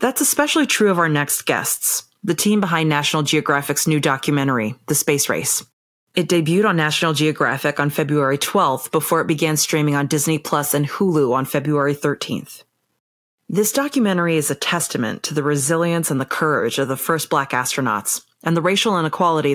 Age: 30-49